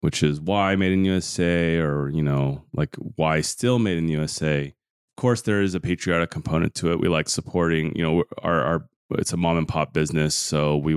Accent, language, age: American, English, 30-49